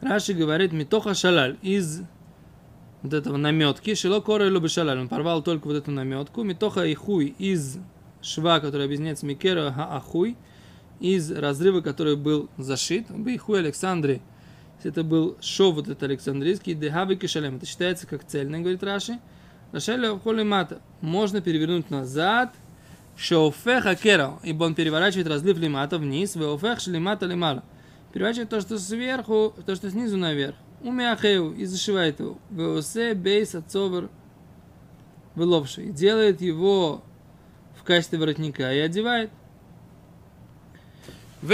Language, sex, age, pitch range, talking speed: Russian, male, 20-39, 155-200 Hz, 135 wpm